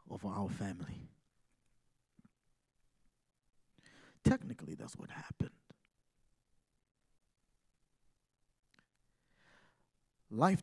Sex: male